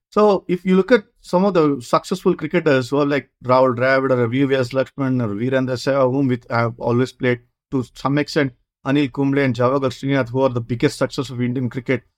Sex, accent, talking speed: male, Indian, 205 wpm